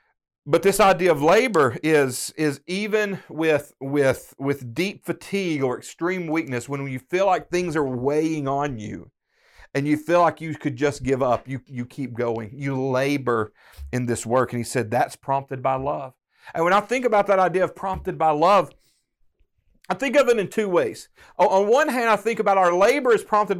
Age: 40-59